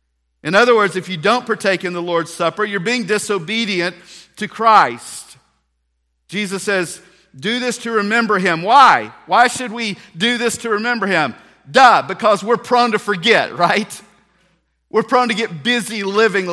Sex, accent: male, American